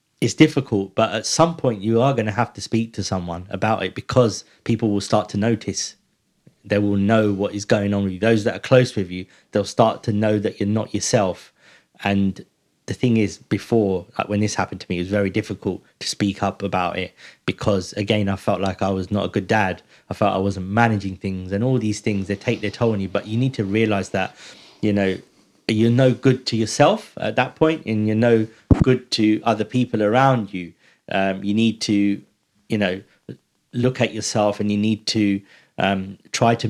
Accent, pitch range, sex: British, 100-115 Hz, male